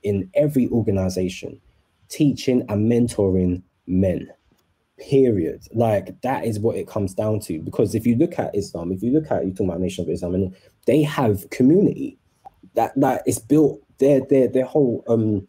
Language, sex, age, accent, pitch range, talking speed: English, male, 20-39, British, 95-130 Hz, 175 wpm